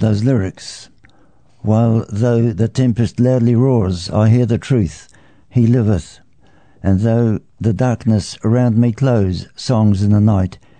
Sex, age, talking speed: male, 60-79, 140 wpm